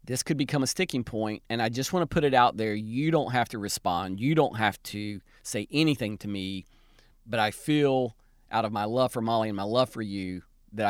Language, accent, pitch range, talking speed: English, American, 100-125 Hz, 235 wpm